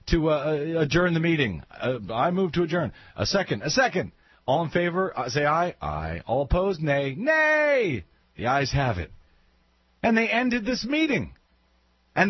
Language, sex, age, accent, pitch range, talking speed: English, male, 40-59, American, 130-185 Hz, 170 wpm